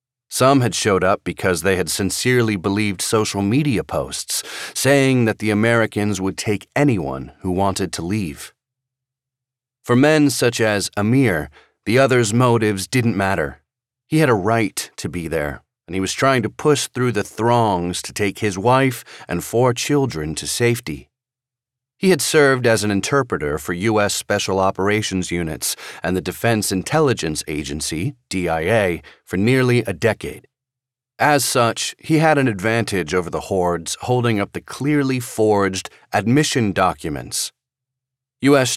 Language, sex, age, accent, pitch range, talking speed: English, male, 40-59, American, 95-130 Hz, 150 wpm